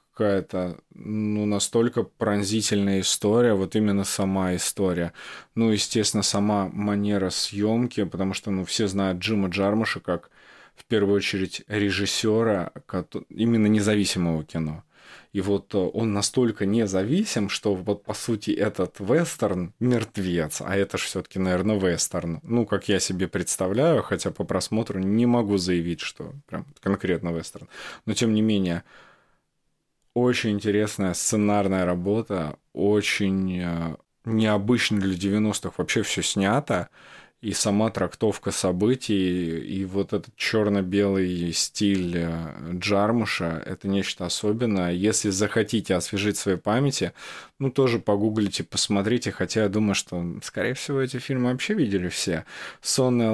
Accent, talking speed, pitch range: native, 125 wpm, 95-110 Hz